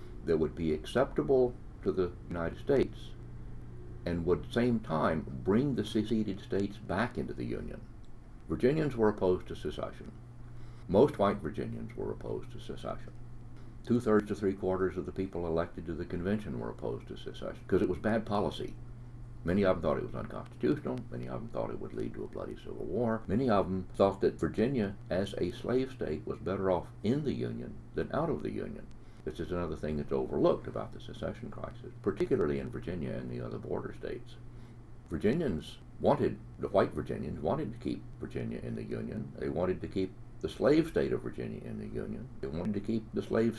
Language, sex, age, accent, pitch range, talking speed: English, male, 60-79, American, 85-120 Hz, 195 wpm